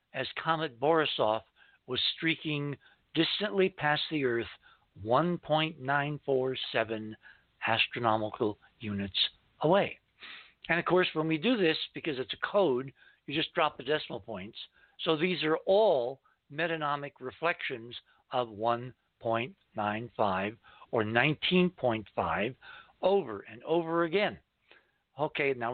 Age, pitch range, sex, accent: 60-79, 125-170 Hz, male, American